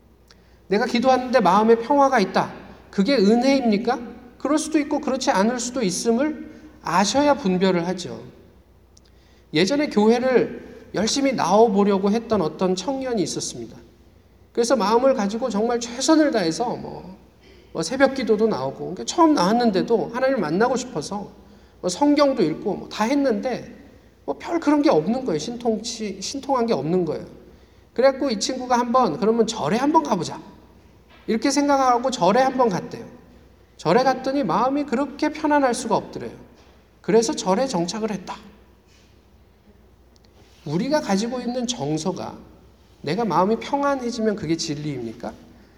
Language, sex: Korean, male